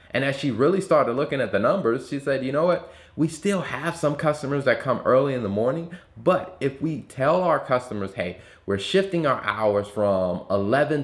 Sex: male